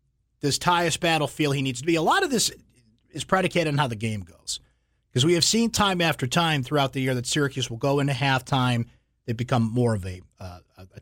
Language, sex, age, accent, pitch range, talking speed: English, male, 50-69, American, 115-155 Hz, 225 wpm